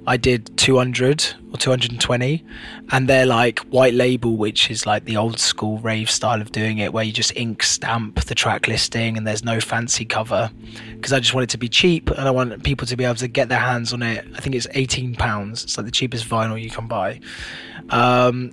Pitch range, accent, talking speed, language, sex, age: 115-140 Hz, British, 220 wpm, English, male, 20-39